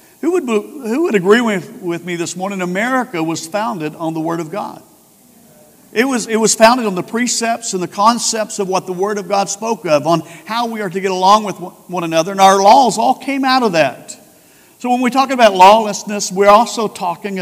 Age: 50-69